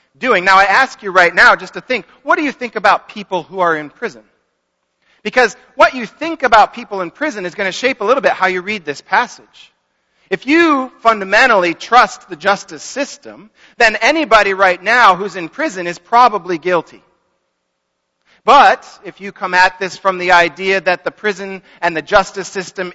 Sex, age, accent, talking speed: male, 40-59, American, 190 wpm